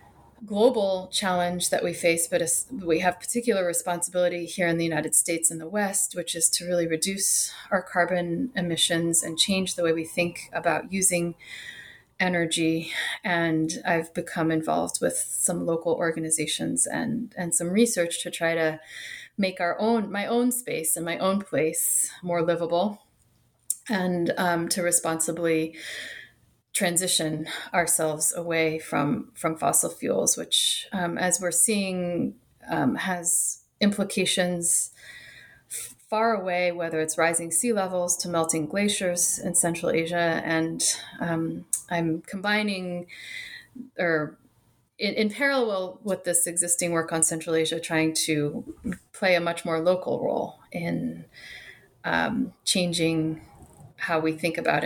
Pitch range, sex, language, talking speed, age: 165-190 Hz, female, English, 135 wpm, 30-49